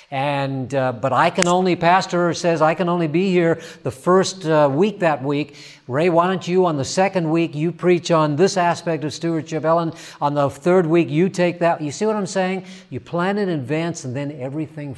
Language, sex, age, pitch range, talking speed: English, male, 50-69, 125-165 Hz, 215 wpm